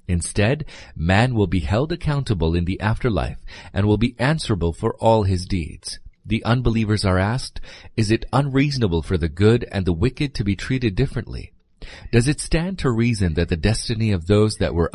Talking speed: 185 wpm